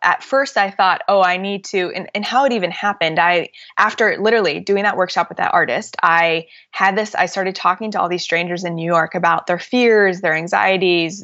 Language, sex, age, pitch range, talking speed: English, female, 20-39, 170-200 Hz, 220 wpm